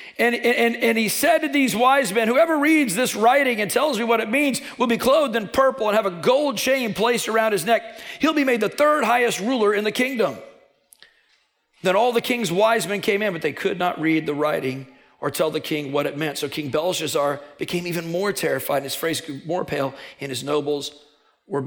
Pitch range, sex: 155-240 Hz, male